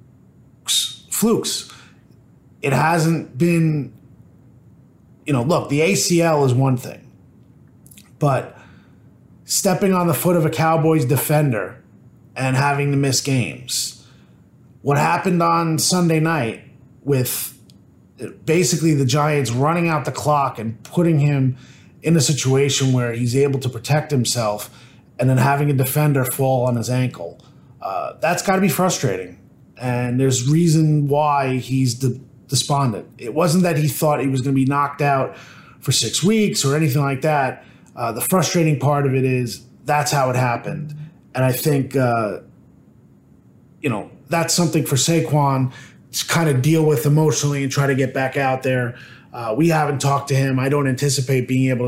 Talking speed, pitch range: 160 wpm, 130-155 Hz